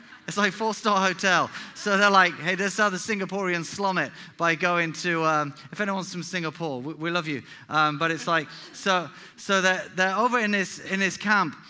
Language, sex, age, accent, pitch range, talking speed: English, male, 30-49, British, 180-235 Hz, 215 wpm